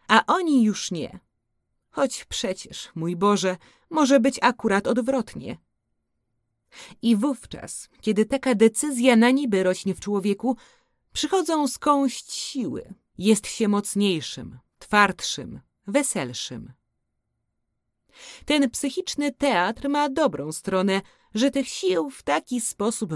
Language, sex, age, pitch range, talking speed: Polish, female, 30-49, 180-275 Hz, 110 wpm